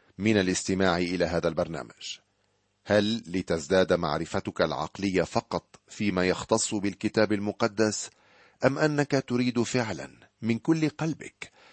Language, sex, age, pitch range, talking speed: Arabic, male, 40-59, 95-125 Hz, 105 wpm